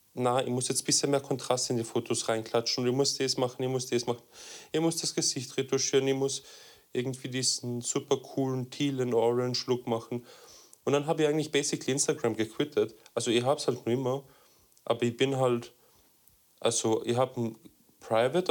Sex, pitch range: male, 115-135 Hz